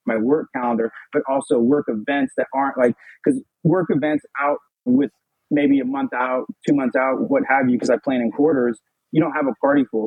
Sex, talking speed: male, 215 wpm